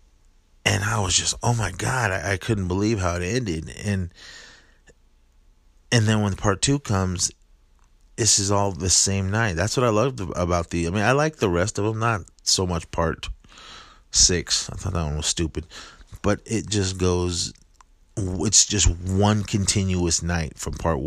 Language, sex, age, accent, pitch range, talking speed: English, male, 30-49, American, 85-100 Hz, 180 wpm